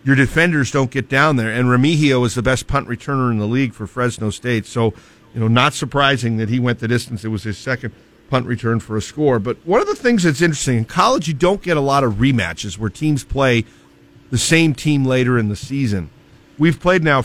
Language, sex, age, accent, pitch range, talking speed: English, male, 50-69, American, 115-150 Hz, 235 wpm